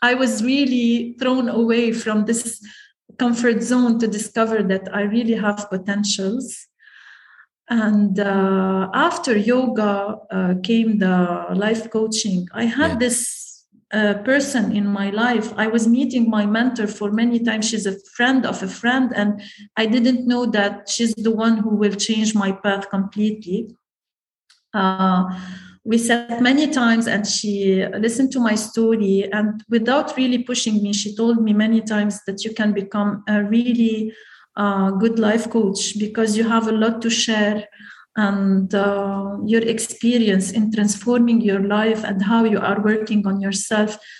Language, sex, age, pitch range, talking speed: English, female, 40-59, 205-230 Hz, 155 wpm